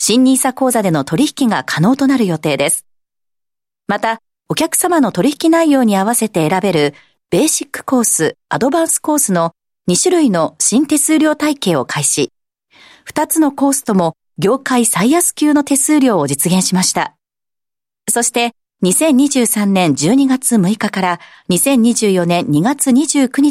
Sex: female